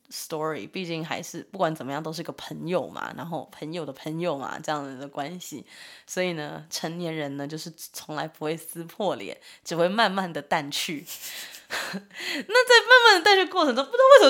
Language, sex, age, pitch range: Chinese, female, 20-39, 160-220 Hz